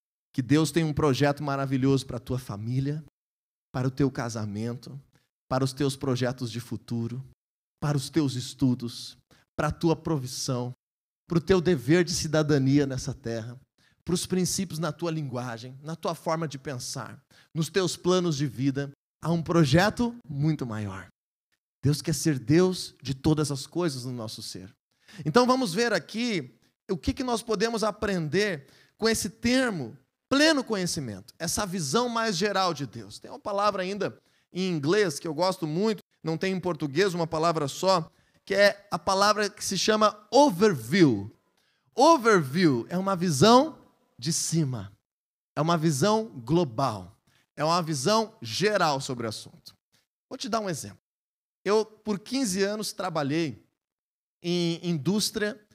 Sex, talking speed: male, 155 wpm